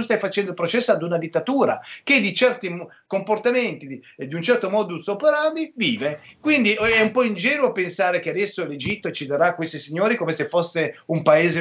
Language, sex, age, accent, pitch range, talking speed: Italian, male, 40-59, native, 145-215 Hz, 185 wpm